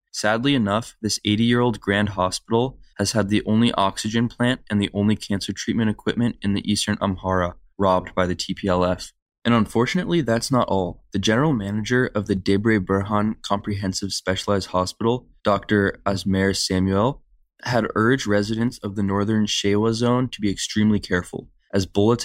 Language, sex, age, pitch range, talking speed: English, male, 20-39, 95-110 Hz, 155 wpm